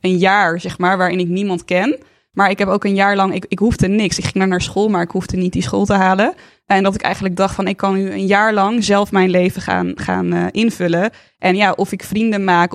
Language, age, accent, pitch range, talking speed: Dutch, 20-39, Dutch, 180-200 Hz, 260 wpm